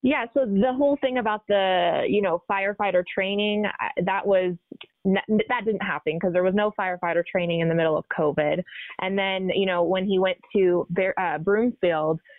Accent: American